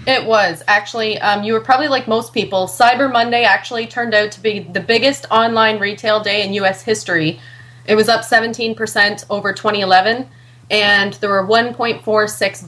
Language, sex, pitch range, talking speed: English, female, 195-230 Hz, 165 wpm